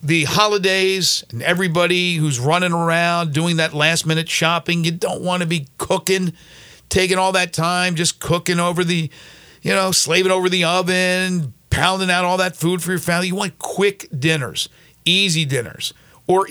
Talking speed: 165 wpm